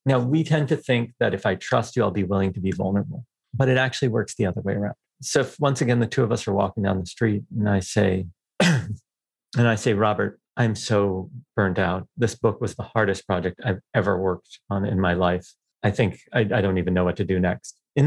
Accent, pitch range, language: American, 100-125 Hz, English